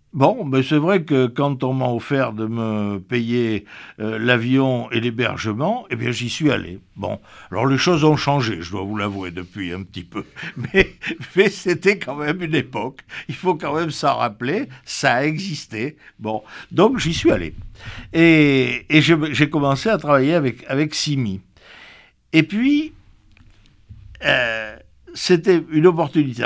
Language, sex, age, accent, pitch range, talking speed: French, male, 60-79, French, 105-155 Hz, 165 wpm